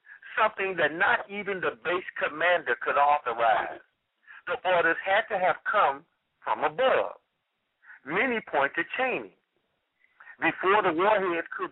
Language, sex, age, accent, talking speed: English, male, 60-79, American, 125 wpm